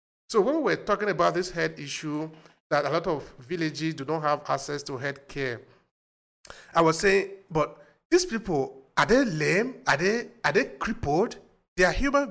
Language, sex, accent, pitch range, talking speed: English, male, Nigerian, 130-175 Hz, 185 wpm